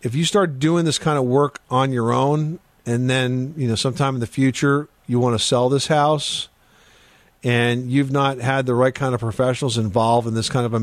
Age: 50-69